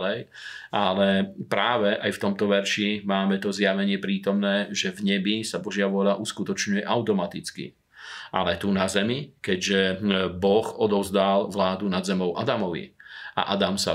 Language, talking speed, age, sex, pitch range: Slovak, 140 wpm, 40-59, male, 95-100 Hz